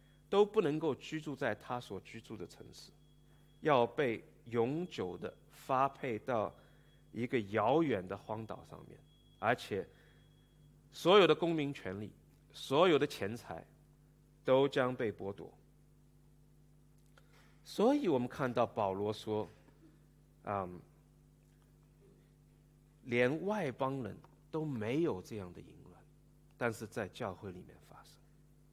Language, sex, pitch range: English, male, 135-175 Hz